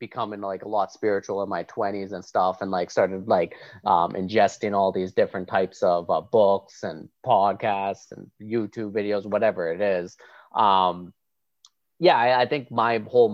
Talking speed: 170 wpm